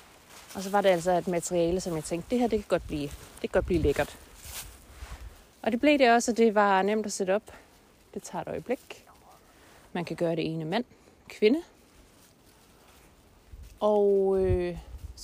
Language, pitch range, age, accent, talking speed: Danish, 165-210 Hz, 30-49, native, 185 wpm